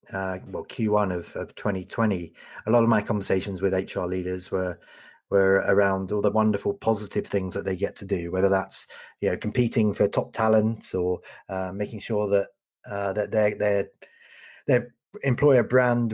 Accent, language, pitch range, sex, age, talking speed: British, English, 95-110 Hz, male, 30-49, 175 wpm